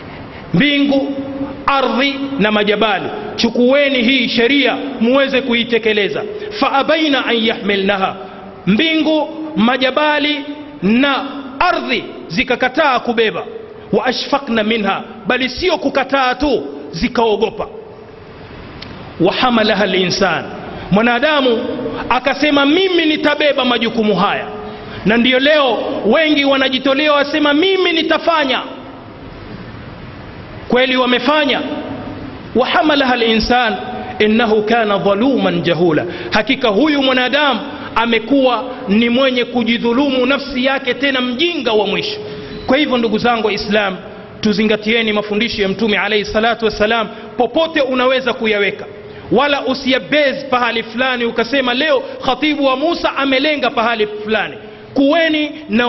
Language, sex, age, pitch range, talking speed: Swahili, male, 40-59, 225-280 Hz, 100 wpm